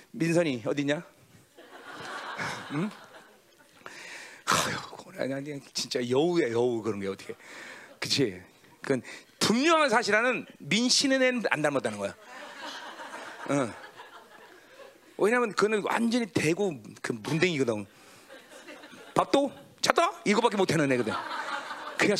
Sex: male